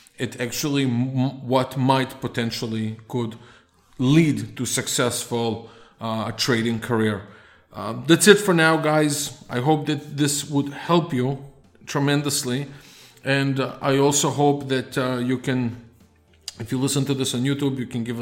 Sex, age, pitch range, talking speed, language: male, 40-59, 115-145 Hz, 155 wpm, English